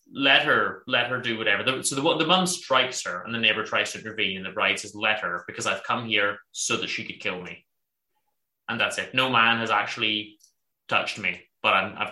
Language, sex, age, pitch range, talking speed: English, male, 20-39, 95-125 Hz, 235 wpm